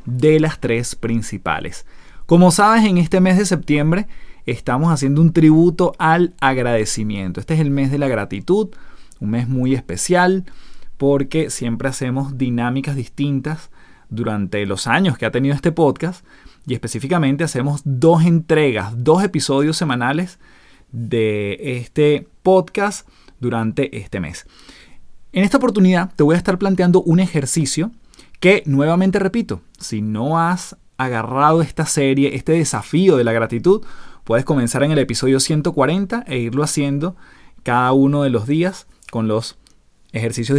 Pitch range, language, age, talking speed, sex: 120-170 Hz, Spanish, 20-39, 140 wpm, male